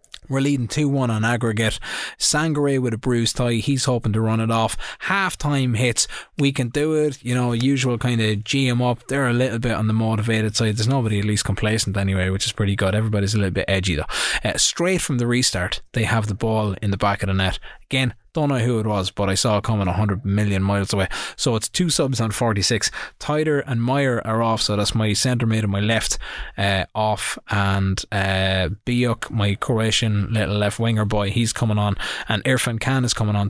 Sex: male